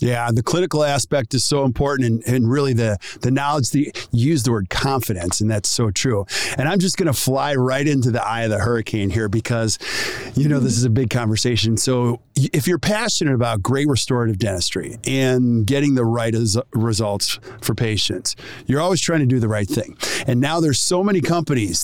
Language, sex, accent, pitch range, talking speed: English, male, American, 115-150 Hz, 205 wpm